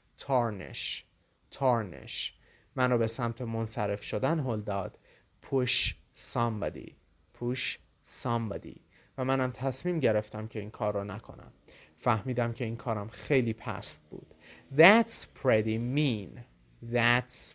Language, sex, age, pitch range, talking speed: Persian, male, 30-49, 115-135 Hz, 110 wpm